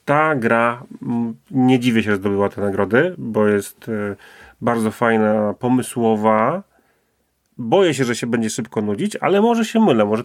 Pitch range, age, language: 115-135 Hz, 30-49, Polish